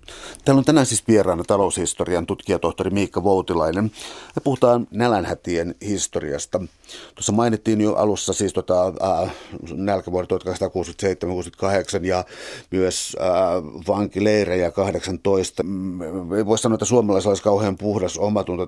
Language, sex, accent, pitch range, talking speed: Finnish, male, native, 95-115 Hz, 120 wpm